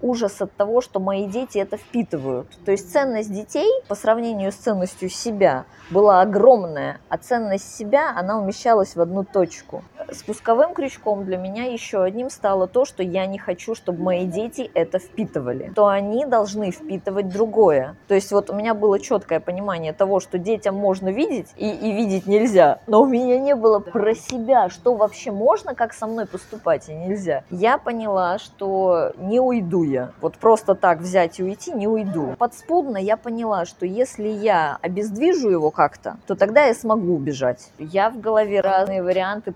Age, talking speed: 20-39, 175 wpm